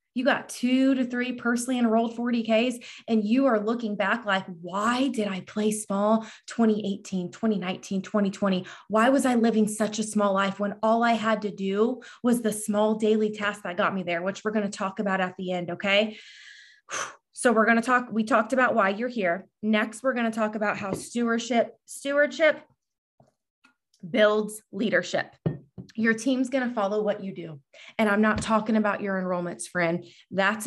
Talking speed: 185 wpm